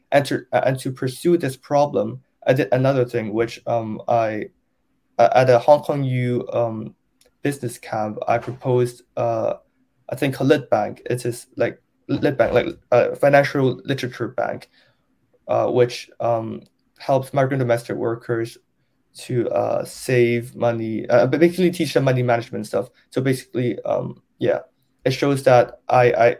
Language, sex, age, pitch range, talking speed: English, male, 20-39, 115-130 Hz, 150 wpm